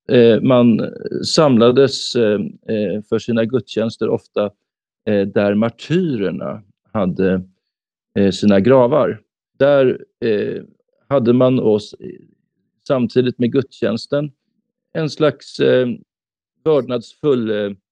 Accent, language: native, Swedish